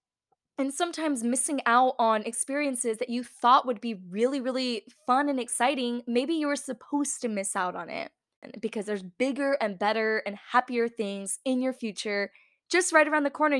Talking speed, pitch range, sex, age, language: 180 wpm, 220-270 Hz, female, 10-29, English